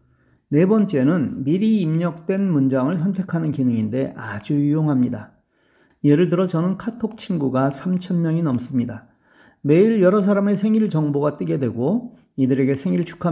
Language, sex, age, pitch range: Korean, male, 40-59, 130-175 Hz